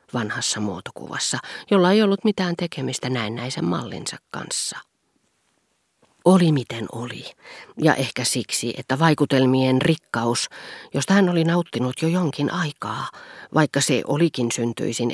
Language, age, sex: Finnish, 40-59, female